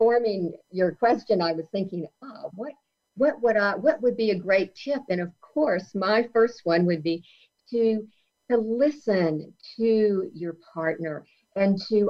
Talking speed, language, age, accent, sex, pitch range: 165 wpm, English, 50-69, American, female, 180-230 Hz